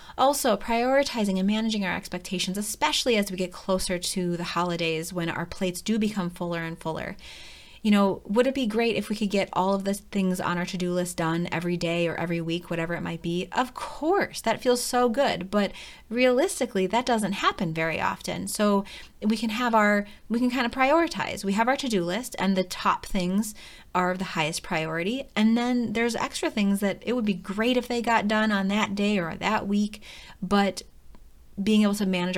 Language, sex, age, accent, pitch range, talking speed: English, female, 30-49, American, 175-225 Hz, 210 wpm